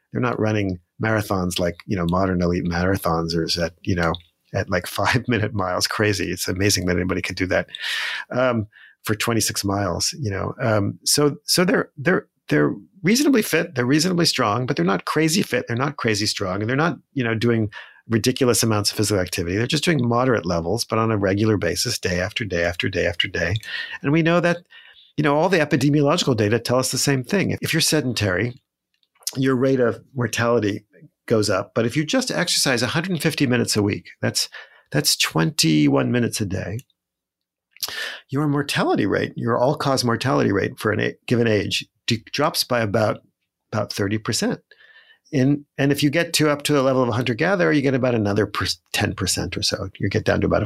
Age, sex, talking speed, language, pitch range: 50-69, male, 190 wpm, English, 100-145 Hz